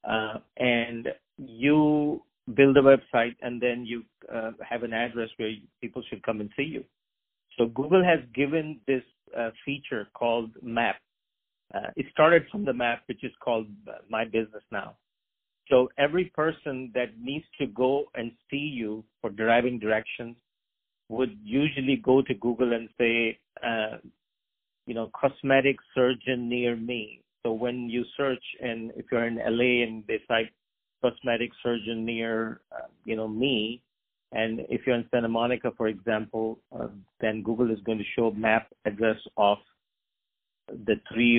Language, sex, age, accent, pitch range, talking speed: English, male, 50-69, Indian, 110-130 Hz, 155 wpm